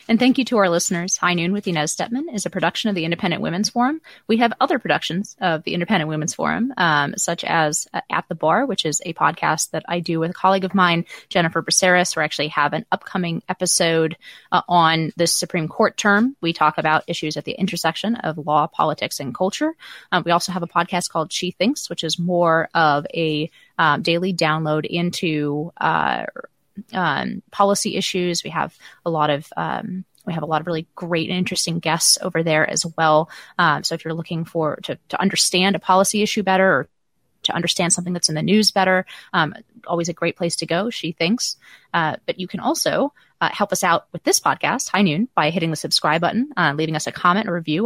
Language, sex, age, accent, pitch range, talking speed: English, female, 20-39, American, 160-195 Hz, 215 wpm